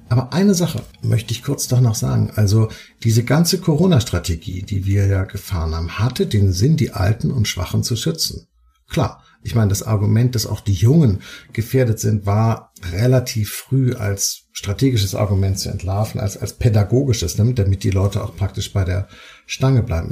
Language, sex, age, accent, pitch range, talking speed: German, male, 50-69, German, 100-130 Hz, 175 wpm